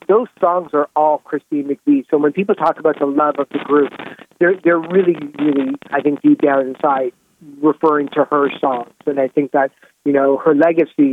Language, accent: English, American